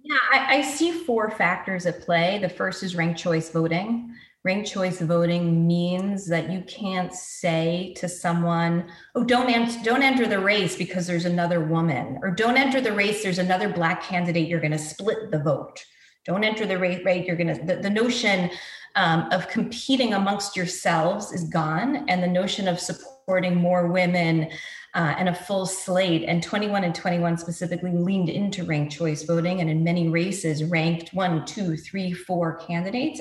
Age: 30-49